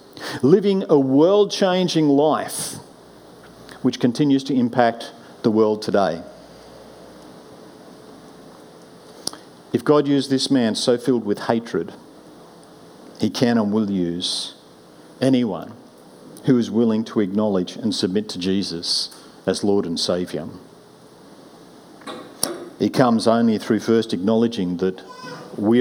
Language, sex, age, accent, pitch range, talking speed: English, male, 50-69, Australian, 90-125 Hz, 110 wpm